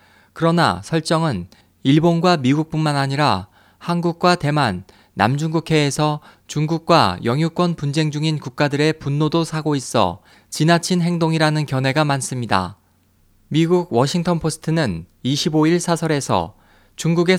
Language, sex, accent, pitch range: Korean, male, native, 105-160 Hz